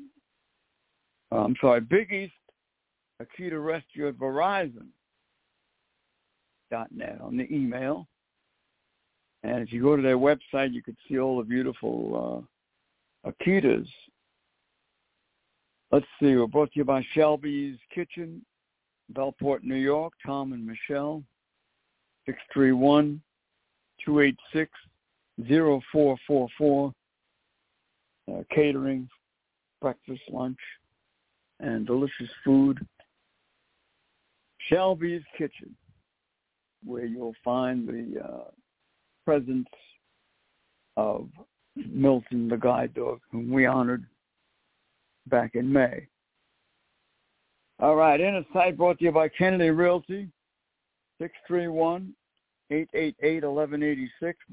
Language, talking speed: English, 90 wpm